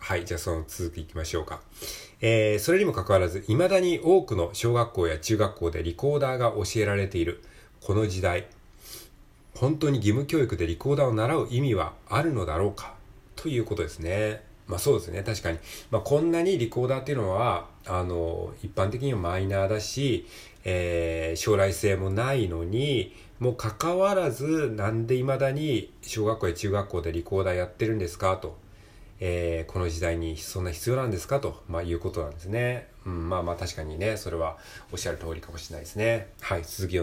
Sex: male